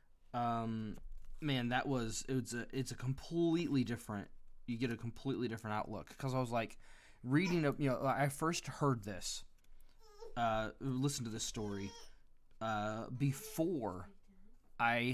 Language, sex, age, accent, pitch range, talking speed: English, male, 20-39, American, 110-135 Hz, 150 wpm